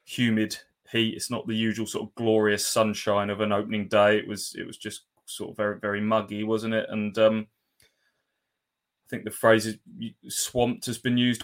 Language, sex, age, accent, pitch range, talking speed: English, male, 20-39, British, 110-125 Hz, 195 wpm